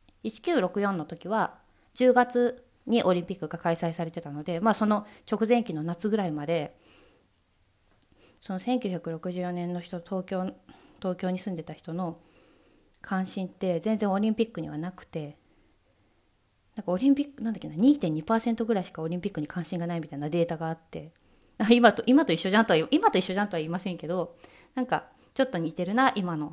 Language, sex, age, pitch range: Japanese, female, 20-39, 165-215 Hz